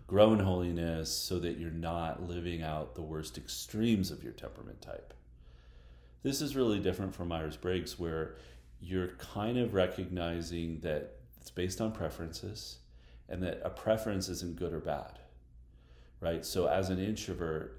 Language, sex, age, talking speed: English, male, 40-59, 150 wpm